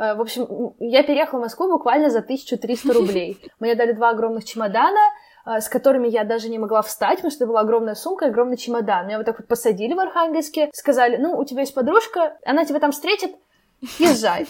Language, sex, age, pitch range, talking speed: Russian, female, 20-39, 225-295 Hz, 205 wpm